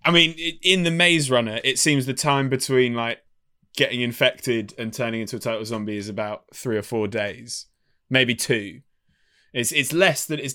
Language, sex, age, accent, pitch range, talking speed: English, male, 20-39, British, 115-140 Hz, 190 wpm